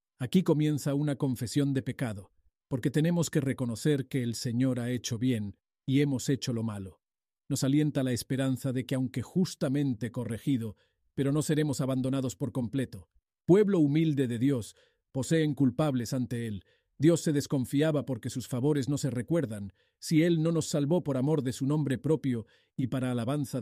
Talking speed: 170 wpm